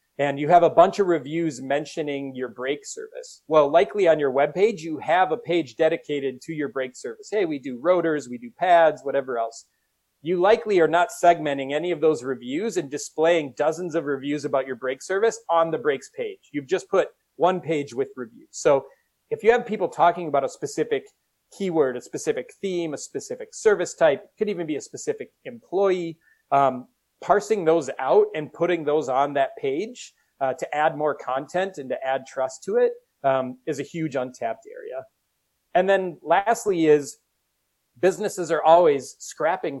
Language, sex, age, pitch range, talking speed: English, male, 30-49, 140-210 Hz, 185 wpm